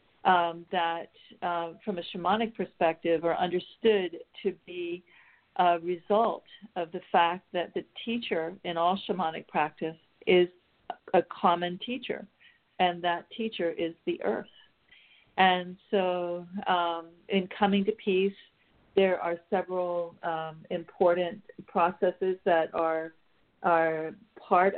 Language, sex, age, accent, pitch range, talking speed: English, female, 50-69, American, 170-195 Hz, 120 wpm